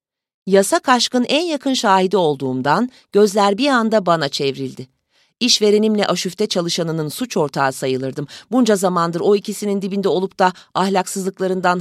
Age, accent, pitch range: 40-59, native, 160-220 Hz